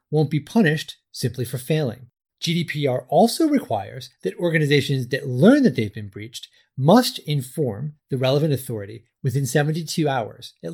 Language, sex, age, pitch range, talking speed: English, male, 30-49, 125-175 Hz, 145 wpm